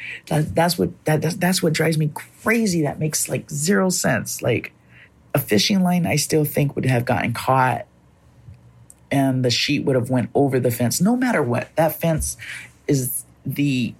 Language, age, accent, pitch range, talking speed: English, 30-49, American, 115-150 Hz, 180 wpm